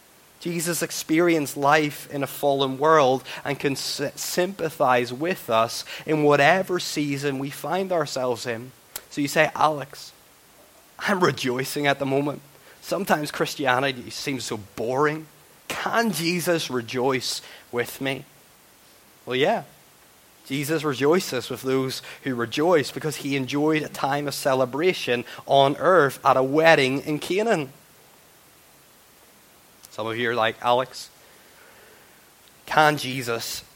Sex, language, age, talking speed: male, English, 20-39, 120 wpm